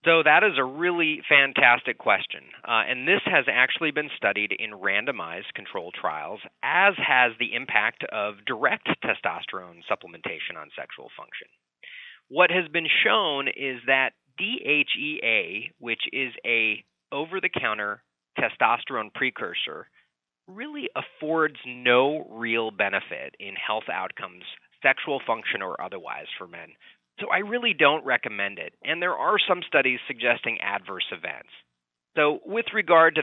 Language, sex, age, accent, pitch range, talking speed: English, male, 30-49, American, 115-170 Hz, 135 wpm